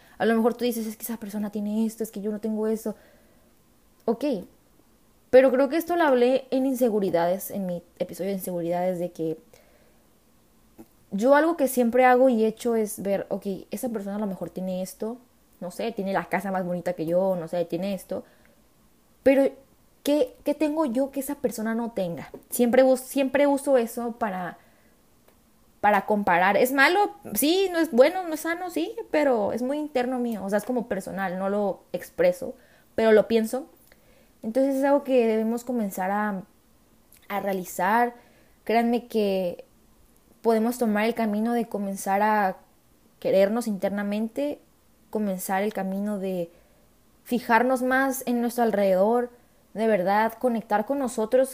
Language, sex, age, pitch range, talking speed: Spanish, female, 20-39, 195-255 Hz, 165 wpm